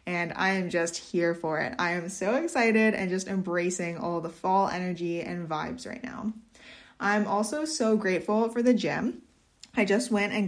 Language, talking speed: English, 190 wpm